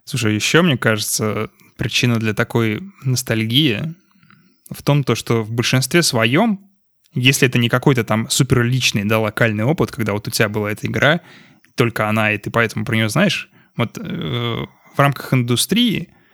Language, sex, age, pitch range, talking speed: Russian, male, 20-39, 110-145 Hz, 155 wpm